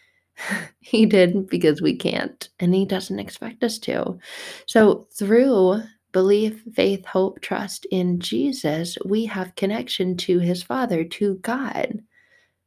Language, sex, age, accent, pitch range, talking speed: English, female, 20-39, American, 175-220 Hz, 130 wpm